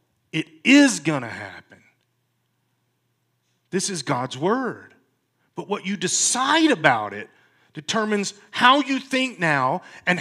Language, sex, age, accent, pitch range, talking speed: English, male, 40-59, American, 145-200 Hz, 120 wpm